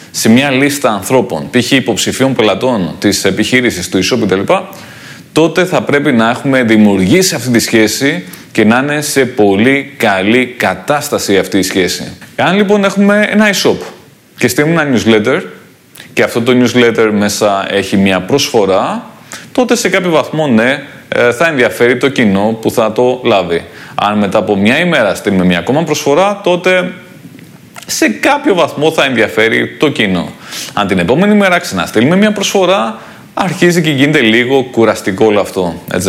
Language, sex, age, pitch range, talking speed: Greek, male, 30-49, 110-165 Hz, 155 wpm